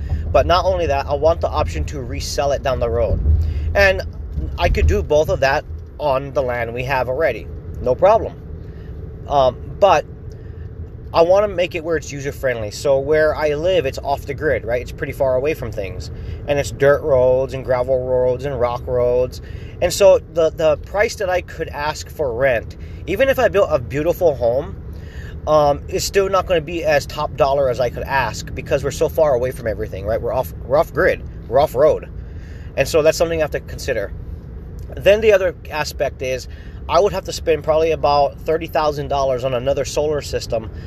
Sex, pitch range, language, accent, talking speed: male, 100-150 Hz, English, American, 200 wpm